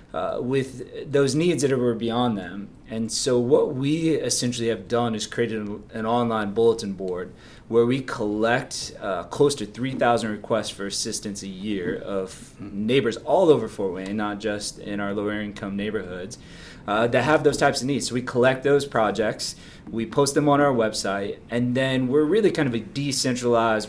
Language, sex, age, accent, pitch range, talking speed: English, male, 20-39, American, 110-125 Hz, 185 wpm